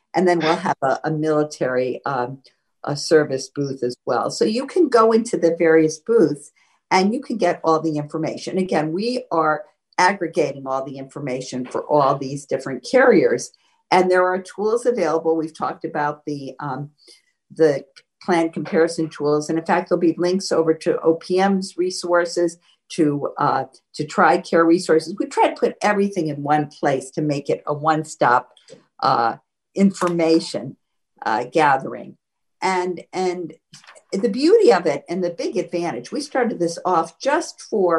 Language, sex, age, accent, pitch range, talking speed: English, female, 50-69, American, 150-185 Hz, 160 wpm